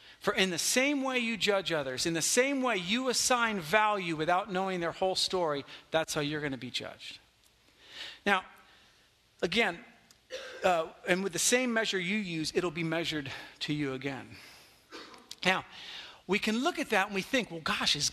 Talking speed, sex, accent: 180 wpm, male, American